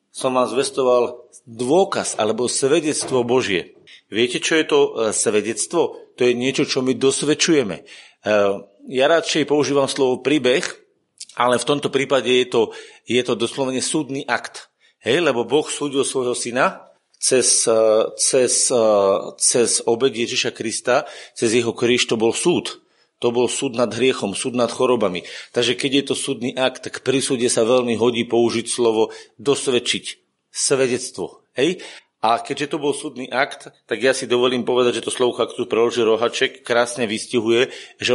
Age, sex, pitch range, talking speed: 40-59, male, 120-145 Hz, 155 wpm